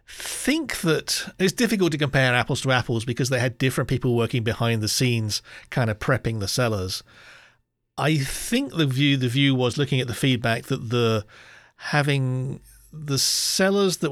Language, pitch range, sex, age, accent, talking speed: English, 115-135 Hz, male, 40-59, British, 170 wpm